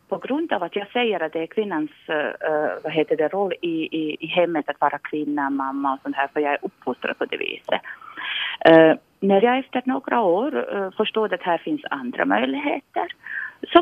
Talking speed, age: 205 wpm, 30-49